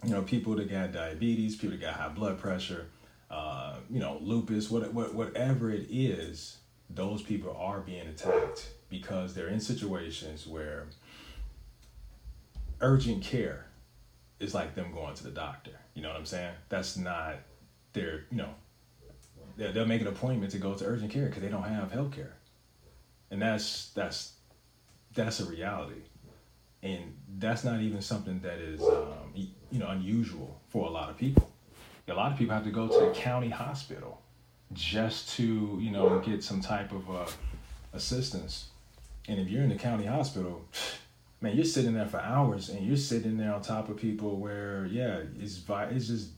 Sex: male